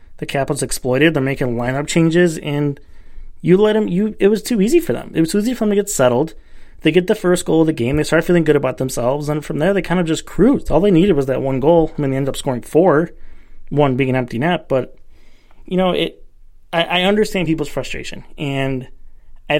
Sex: male